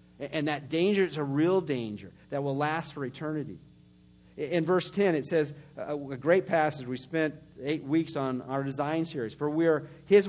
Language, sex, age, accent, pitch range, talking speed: English, male, 50-69, American, 140-180 Hz, 185 wpm